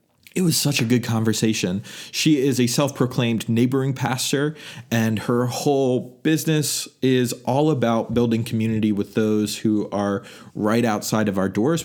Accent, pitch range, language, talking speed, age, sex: American, 110-140 Hz, English, 150 wpm, 30-49, male